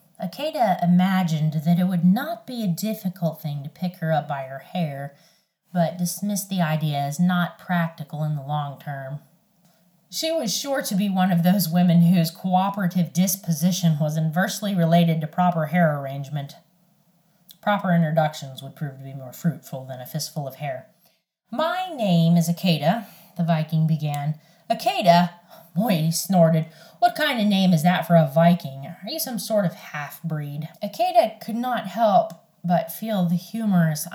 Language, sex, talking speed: English, female, 165 wpm